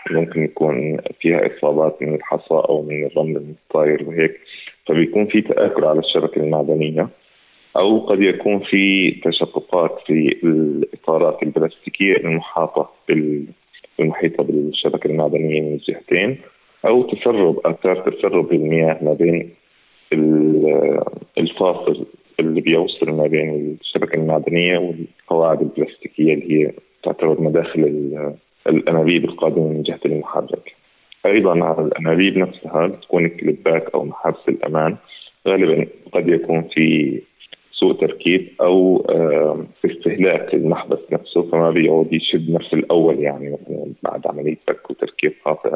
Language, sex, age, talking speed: Arabic, male, 30-49, 115 wpm